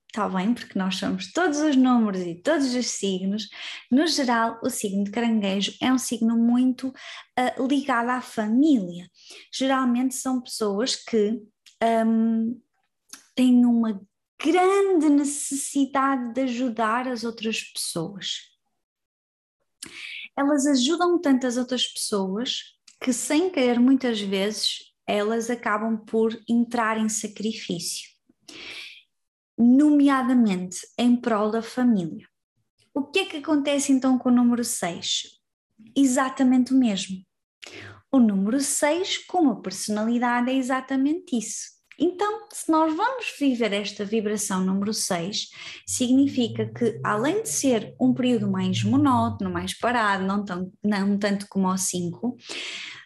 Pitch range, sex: 210-270 Hz, female